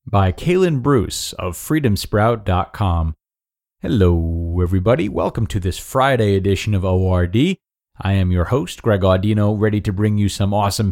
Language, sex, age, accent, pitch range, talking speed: English, male, 30-49, American, 90-125 Hz, 145 wpm